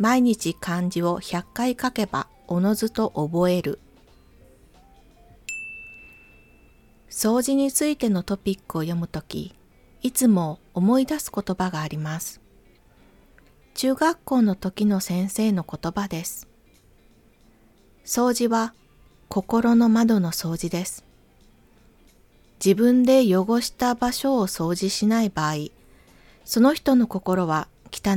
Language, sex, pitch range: Japanese, female, 165-230 Hz